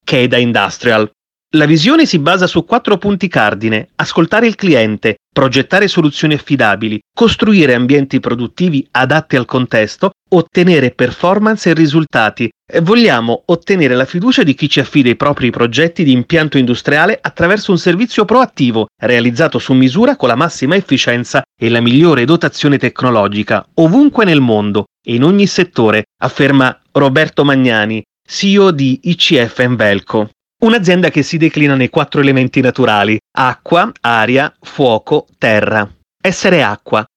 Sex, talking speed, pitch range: male, 140 wpm, 125-175 Hz